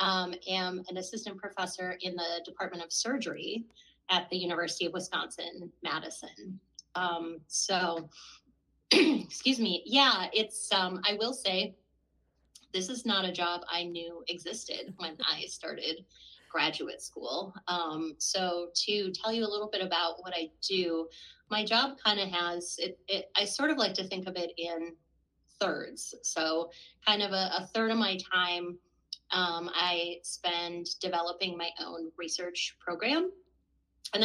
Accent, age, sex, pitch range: American, 30-49, female, 170-200 Hz